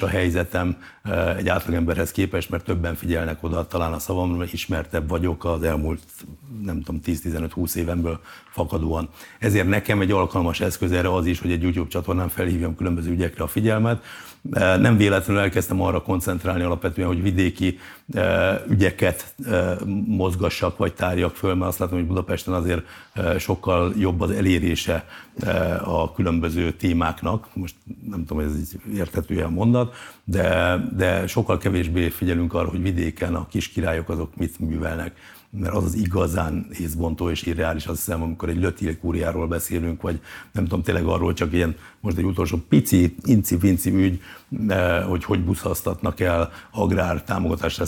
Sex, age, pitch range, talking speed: male, 60-79, 85-95 Hz, 150 wpm